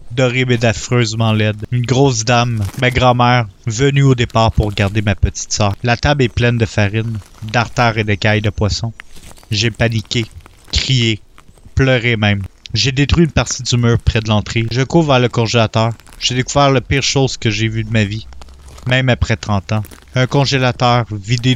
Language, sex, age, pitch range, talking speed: French, male, 30-49, 100-125 Hz, 185 wpm